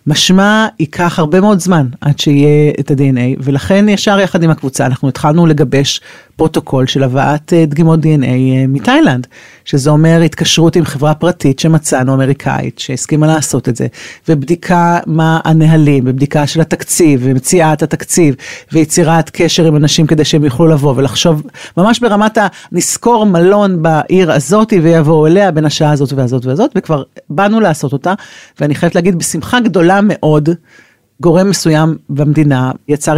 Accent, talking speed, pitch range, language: native, 135 wpm, 145-190 Hz, Hebrew